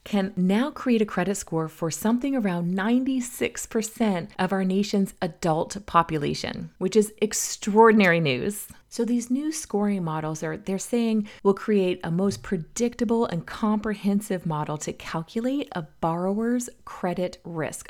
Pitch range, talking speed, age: 170-220 Hz, 135 wpm, 30-49